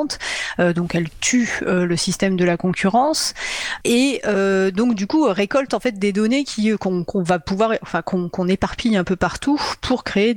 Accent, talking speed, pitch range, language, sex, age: French, 180 wpm, 180-215 Hz, French, female, 30-49